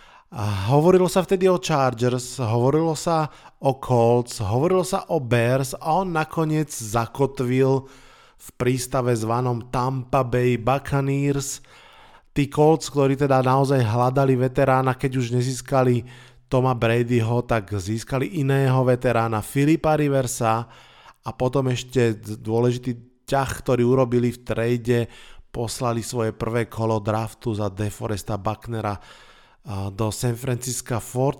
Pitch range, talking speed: 115-135 Hz, 120 wpm